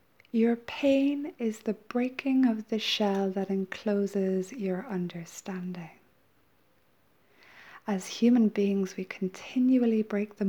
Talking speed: 110 wpm